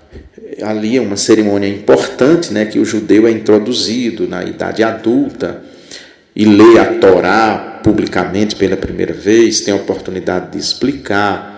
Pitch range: 100-145 Hz